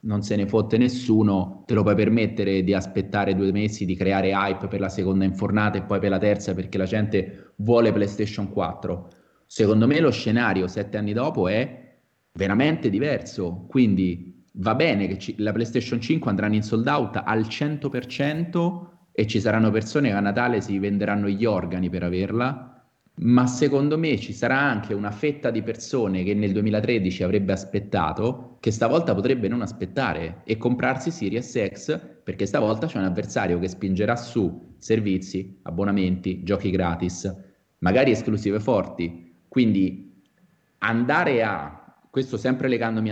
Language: Italian